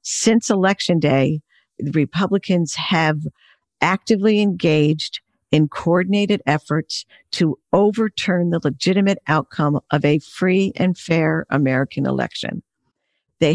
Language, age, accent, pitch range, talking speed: English, 50-69, American, 155-200 Hz, 100 wpm